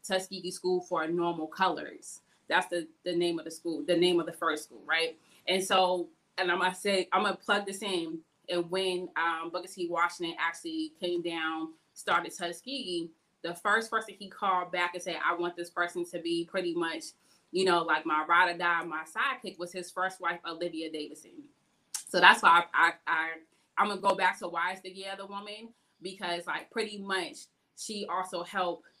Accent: American